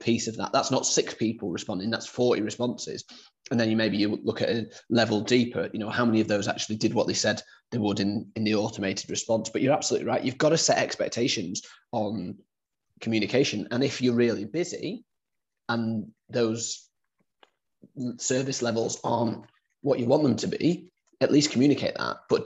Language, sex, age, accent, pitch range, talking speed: English, male, 20-39, British, 110-130 Hz, 190 wpm